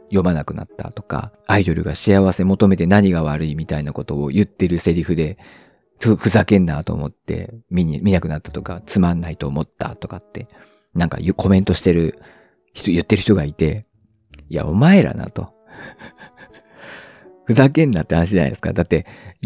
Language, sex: Japanese, male